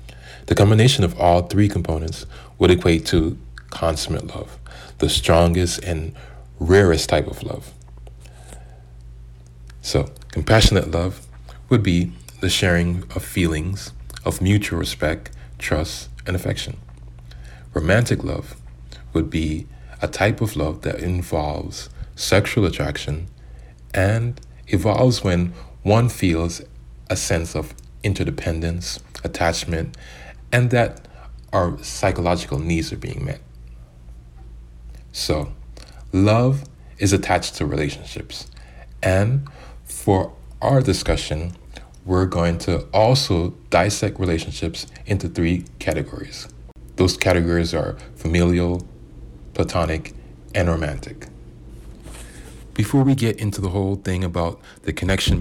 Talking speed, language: 105 wpm, English